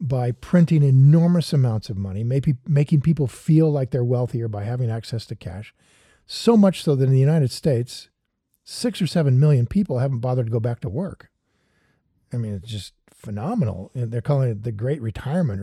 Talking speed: 190 wpm